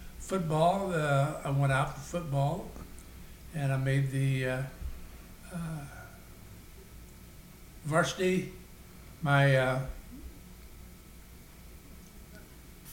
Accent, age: American, 60-79